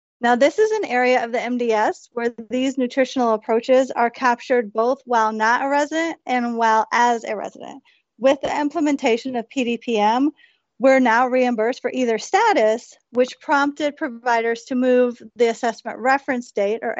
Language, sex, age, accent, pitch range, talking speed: English, female, 30-49, American, 230-275 Hz, 160 wpm